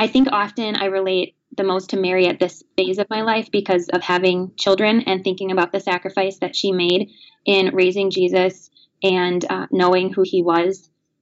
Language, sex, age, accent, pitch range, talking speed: English, female, 20-39, American, 185-205 Hz, 195 wpm